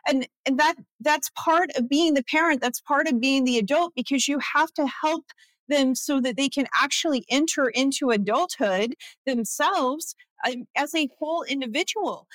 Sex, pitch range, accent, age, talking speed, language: female, 235-310 Hz, American, 40-59, 165 wpm, English